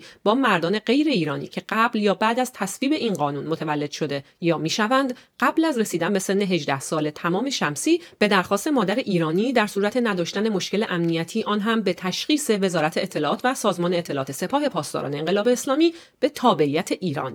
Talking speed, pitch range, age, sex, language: 175 wpm, 165-230 Hz, 40-59, female, Persian